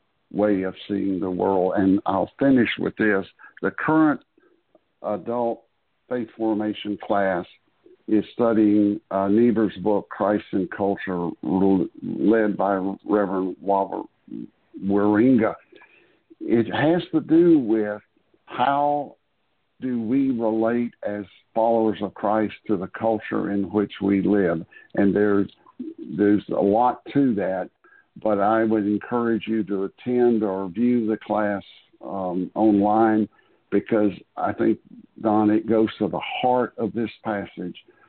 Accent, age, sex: American, 60-79, male